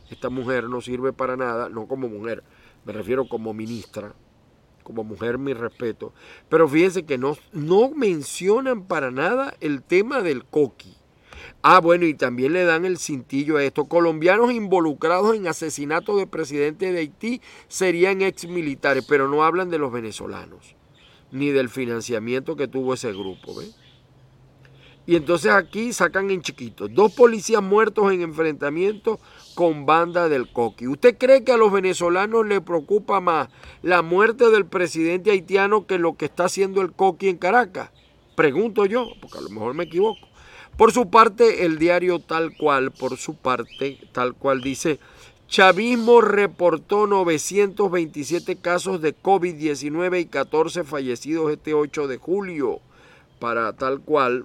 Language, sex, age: Spanish, male, 40-59